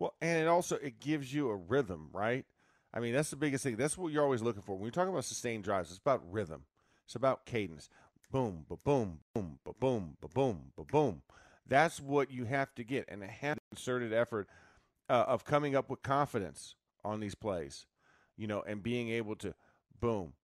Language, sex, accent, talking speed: English, male, American, 195 wpm